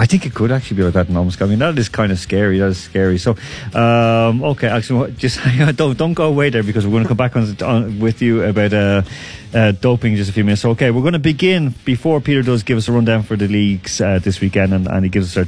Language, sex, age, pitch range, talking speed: English, male, 30-49, 110-145 Hz, 285 wpm